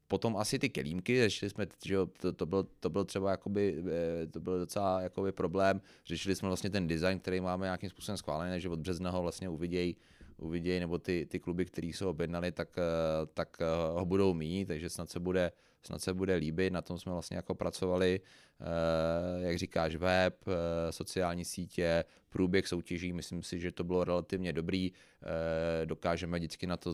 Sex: male